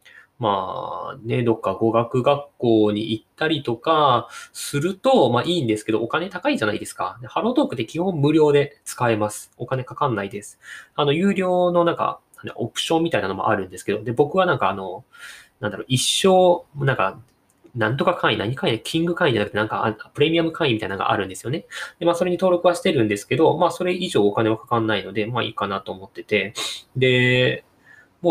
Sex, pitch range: male, 110-170 Hz